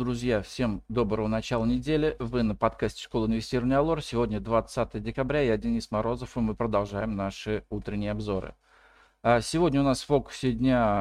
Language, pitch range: Russian, 110-140 Hz